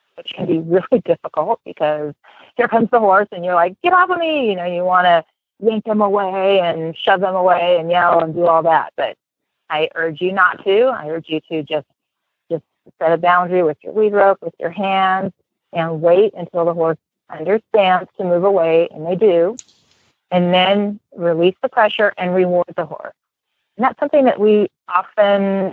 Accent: American